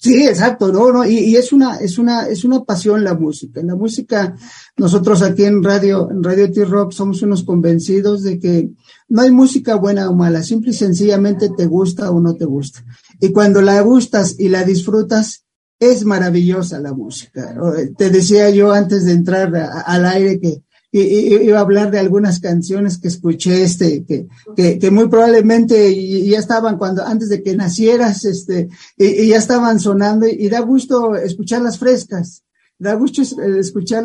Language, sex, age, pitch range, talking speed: English, male, 50-69, 185-220 Hz, 180 wpm